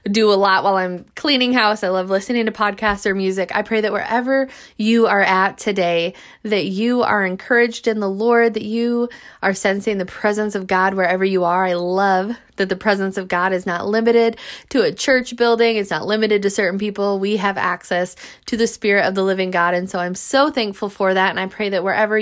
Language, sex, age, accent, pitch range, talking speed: English, female, 20-39, American, 190-225 Hz, 220 wpm